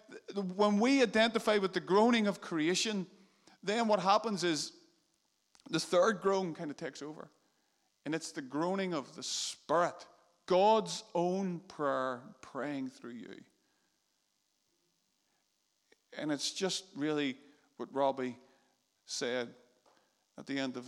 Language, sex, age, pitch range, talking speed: English, male, 50-69, 135-175 Hz, 125 wpm